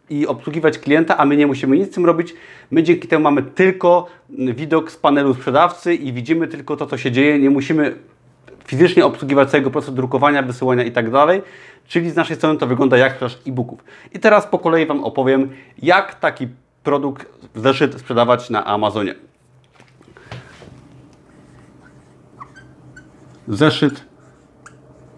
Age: 40-59